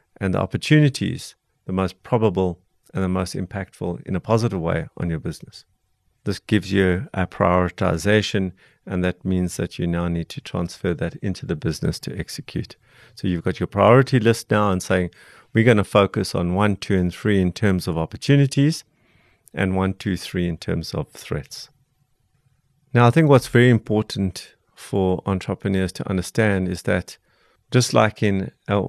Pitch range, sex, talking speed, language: 95-115 Hz, male, 170 wpm, English